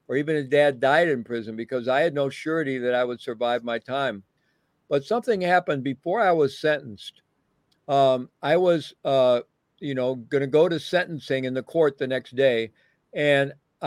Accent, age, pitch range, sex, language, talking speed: American, 50-69, 130-155 Hz, male, English, 185 wpm